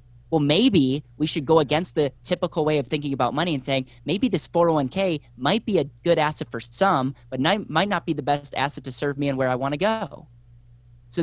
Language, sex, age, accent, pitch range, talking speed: English, male, 10-29, American, 120-150 Hz, 225 wpm